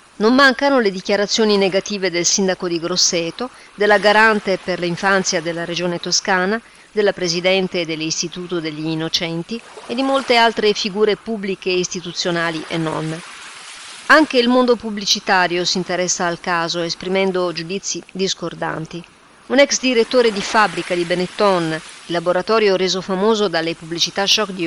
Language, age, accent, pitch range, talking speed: Italian, 40-59, native, 175-210 Hz, 140 wpm